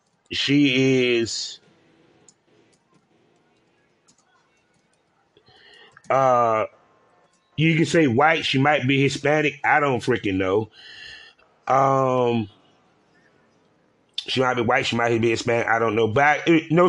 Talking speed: 105 wpm